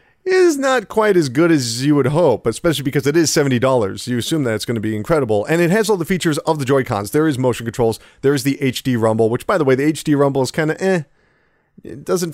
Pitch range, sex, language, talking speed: 115-150 Hz, male, English, 265 wpm